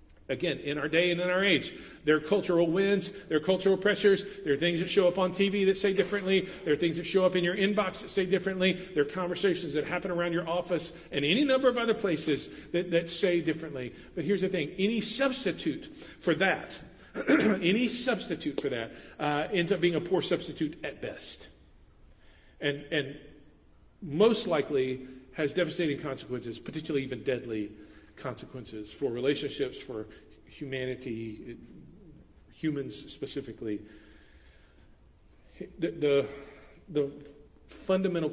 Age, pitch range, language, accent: 50-69, 110-185 Hz, English, American